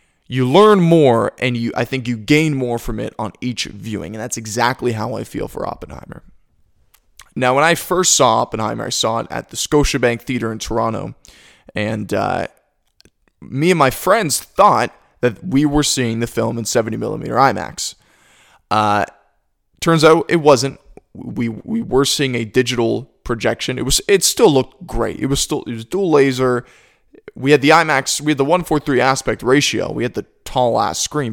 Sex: male